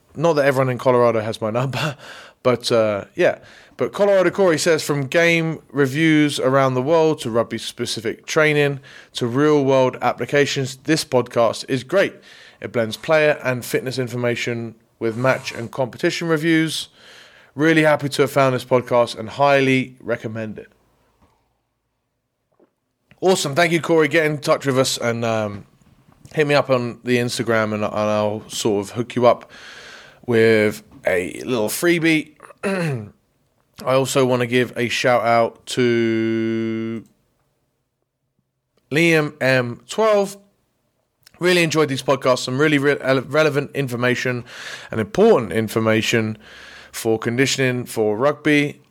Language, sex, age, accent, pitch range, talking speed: English, male, 20-39, British, 115-150 Hz, 135 wpm